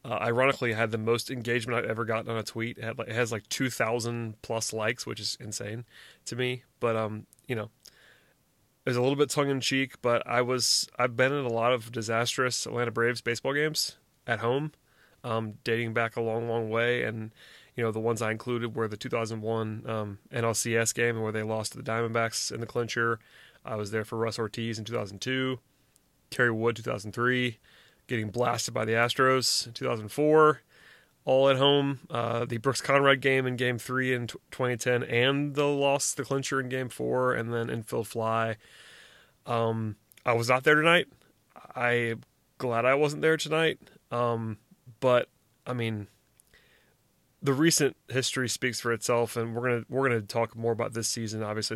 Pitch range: 115-130 Hz